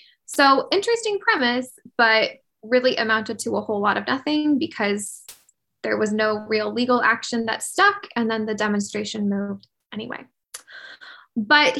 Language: English